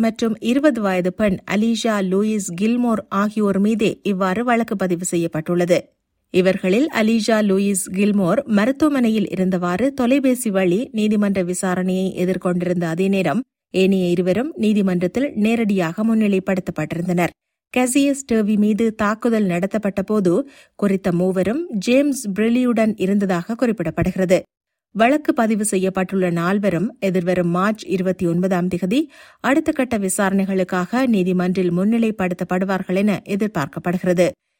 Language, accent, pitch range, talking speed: Tamil, native, 185-230 Hz, 95 wpm